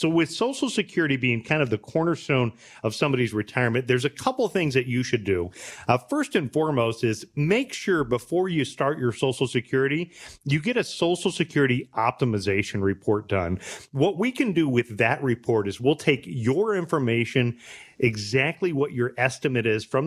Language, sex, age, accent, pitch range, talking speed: English, male, 40-59, American, 115-165 Hz, 180 wpm